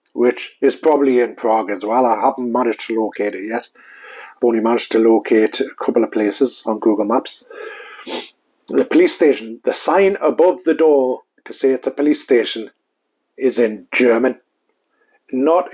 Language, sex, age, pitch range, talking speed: English, male, 50-69, 115-170 Hz, 170 wpm